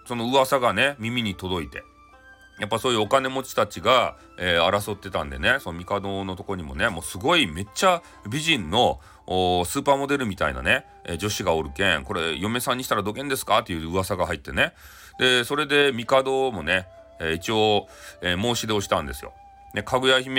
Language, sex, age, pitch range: Japanese, male, 40-59, 100-140 Hz